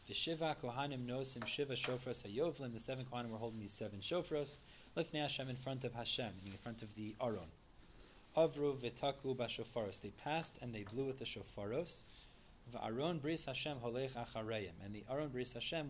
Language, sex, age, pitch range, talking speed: English, male, 20-39, 110-140 Hz, 165 wpm